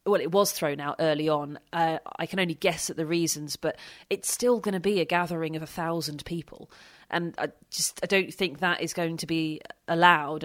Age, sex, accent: 30-49, female, British